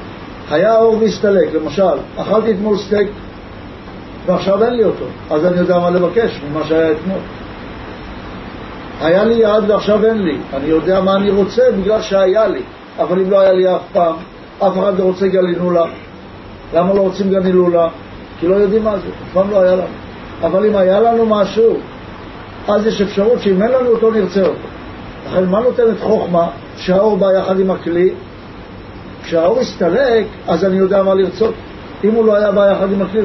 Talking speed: 170 wpm